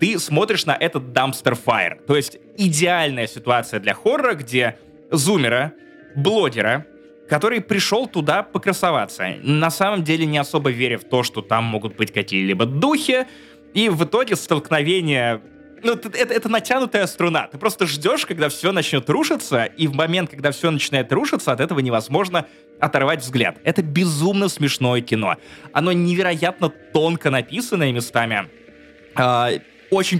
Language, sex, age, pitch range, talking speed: Russian, male, 20-39, 135-180 Hz, 140 wpm